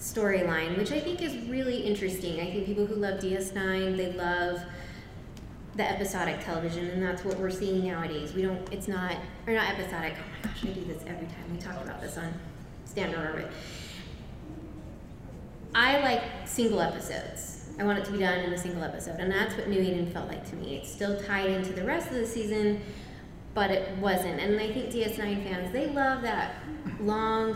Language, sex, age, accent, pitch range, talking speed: English, female, 20-39, American, 180-215 Hz, 195 wpm